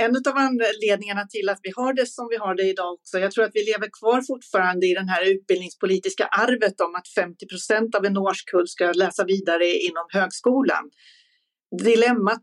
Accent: native